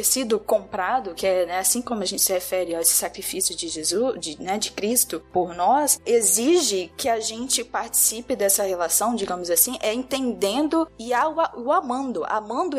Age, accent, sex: 10-29, Brazilian, female